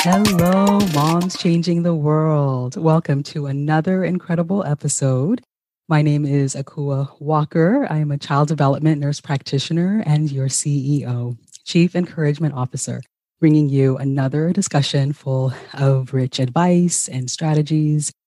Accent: American